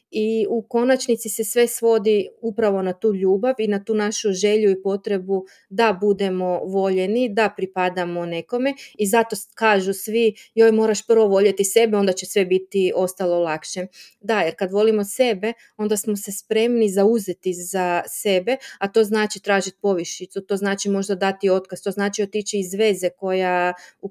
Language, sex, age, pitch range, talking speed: Croatian, female, 30-49, 190-225 Hz, 165 wpm